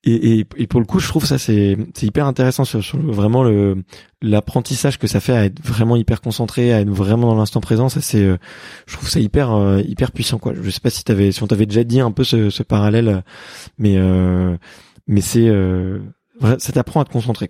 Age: 20-39